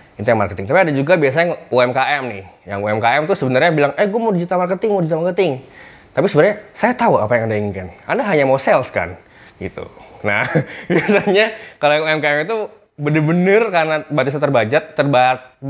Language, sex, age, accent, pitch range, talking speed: Indonesian, male, 20-39, native, 105-165 Hz, 170 wpm